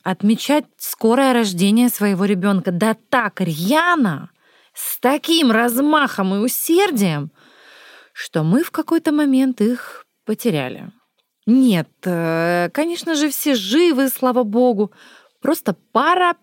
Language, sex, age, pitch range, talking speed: Russian, female, 20-39, 185-255 Hz, 105 wpm